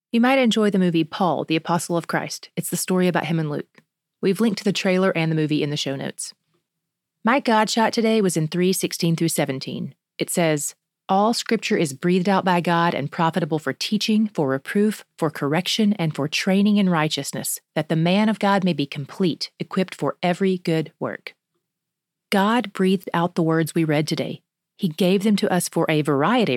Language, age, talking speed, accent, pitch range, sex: English, 30-49, 205 wpm, American, 165-205 Hz, female